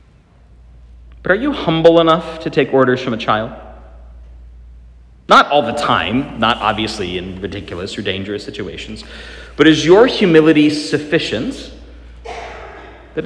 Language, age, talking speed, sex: English, 40-59, 125 wpm, male